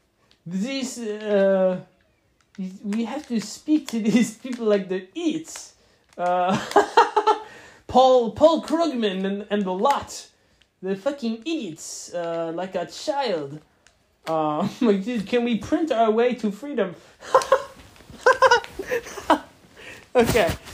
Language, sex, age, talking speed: English, male, 20-39, 105 wpm